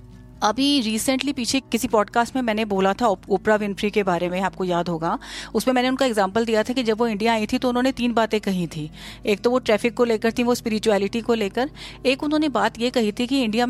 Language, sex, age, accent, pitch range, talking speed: Hindi, female, 30-49, native, 200-250 Hz, 235 wpm